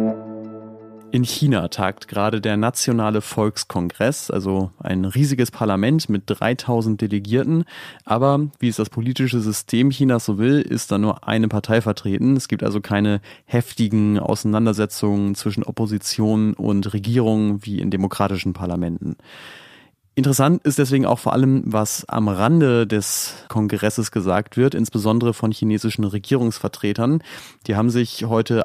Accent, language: German, German